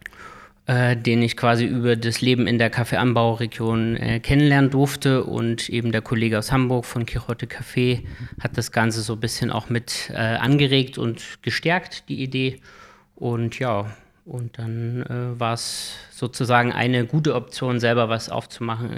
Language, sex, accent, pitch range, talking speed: German, male, German, 115-125 Hz, 150 wpm